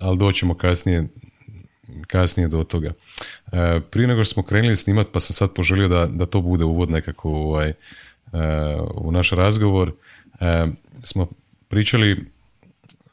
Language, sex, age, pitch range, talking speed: Croatian, male, 30-49, 85-100 Hz, 135 wpm